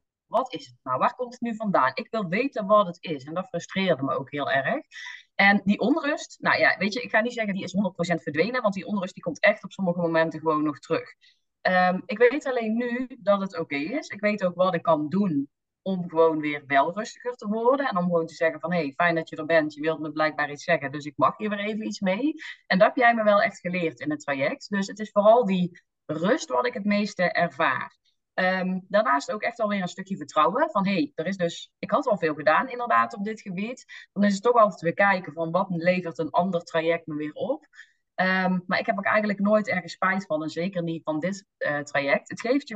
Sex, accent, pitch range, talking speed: female, Dutch, 165-215 Hz, 245 wpm